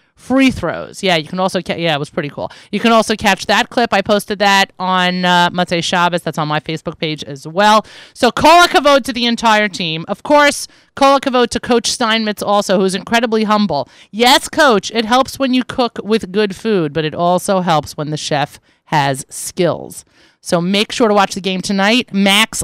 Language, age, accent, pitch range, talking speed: English, 30-49, American, 165-225 Hz, 210 wpm